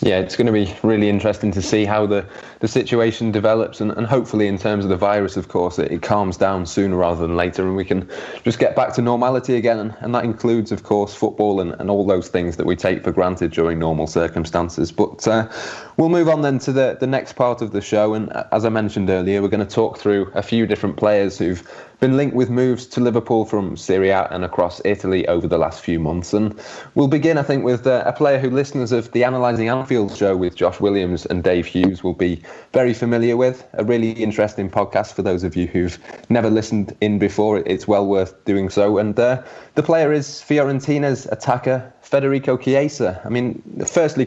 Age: 20-39